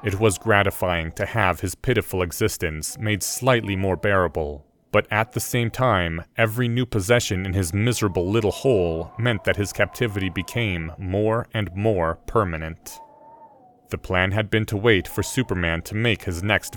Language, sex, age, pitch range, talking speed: English, male, 30-49, 95-125 Hz, 165 wpm